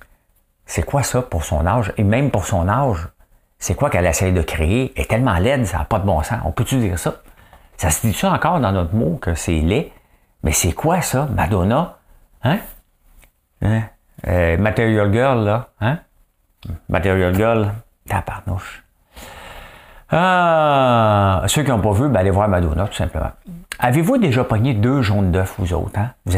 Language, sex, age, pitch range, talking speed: English, male, 50-69, 90-130 Hz, 180 wpm